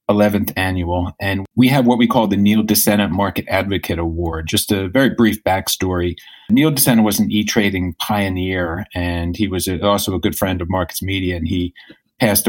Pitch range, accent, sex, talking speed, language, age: 90-105 Hz, American, male, 185 wpm, English, 40-59